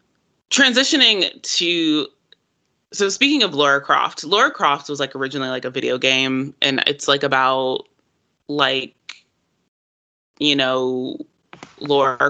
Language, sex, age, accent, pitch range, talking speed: English, female, 20-39, American, 135-165 Hz, 115 wpm